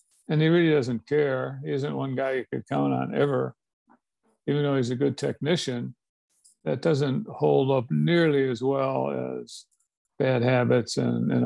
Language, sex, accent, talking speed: English, male, American, 170 wpm